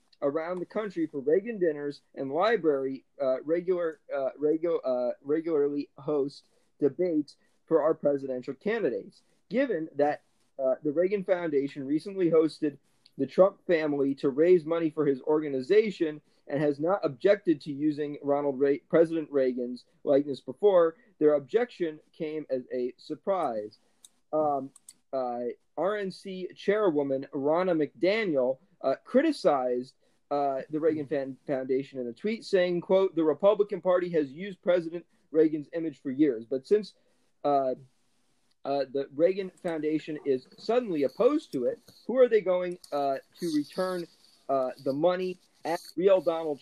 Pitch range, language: 140-180 Hz, English